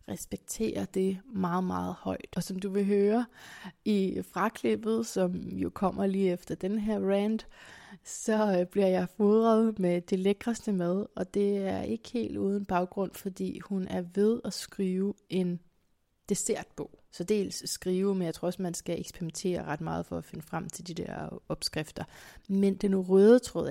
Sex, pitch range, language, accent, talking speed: female, 170-200 Hz, Danish, native, 170 wpm